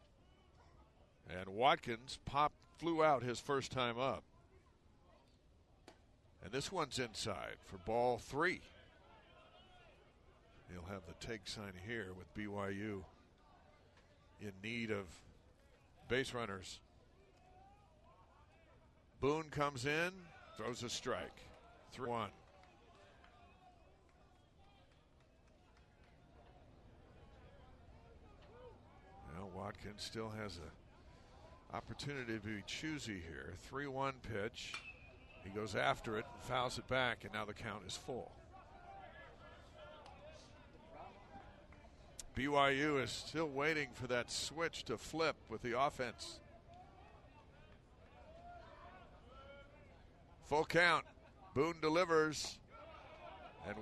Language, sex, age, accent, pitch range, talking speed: English, male, 60-79, American, 90-130 Hz, 90 wpm